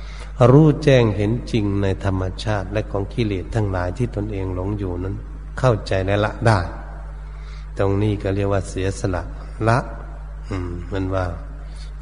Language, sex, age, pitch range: Thai, male, 60-79, 95-110 Hz